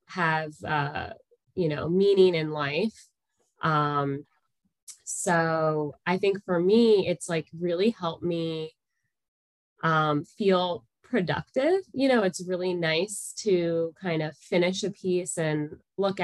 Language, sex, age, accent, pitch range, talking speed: English, female, 20-39, American, 160-195 Hz, 125 wpm